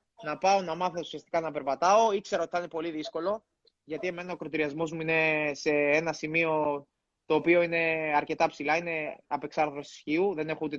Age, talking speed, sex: 20-39, 180 wpm, male